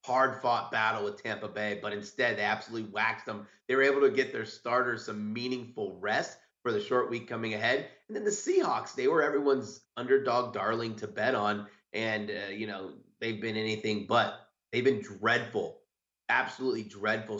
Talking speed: 180 wpm